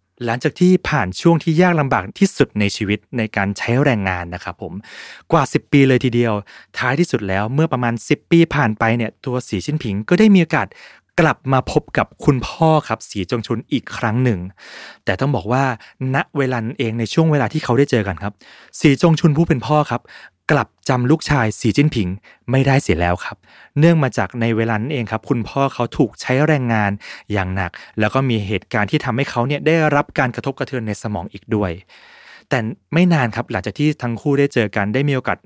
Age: 20-39